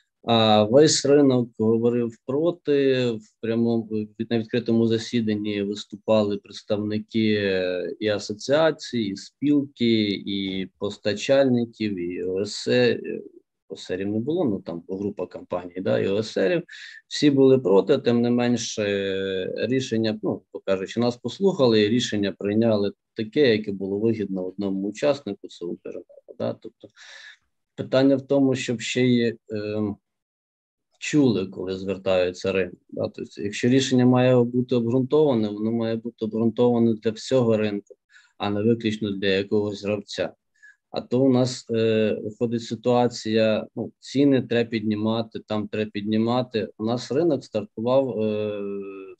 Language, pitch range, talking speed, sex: Ukrainian, 105-125 Hz, 125 wpm, male